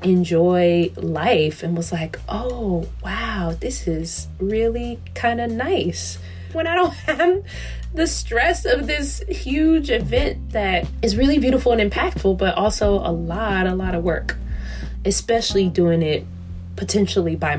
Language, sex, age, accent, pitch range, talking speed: English, female, 20-39, American, 155-200 Hz, 145 wpm